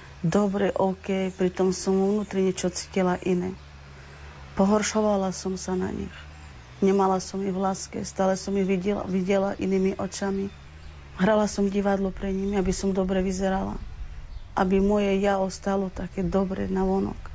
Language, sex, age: Slovak, female, 30-49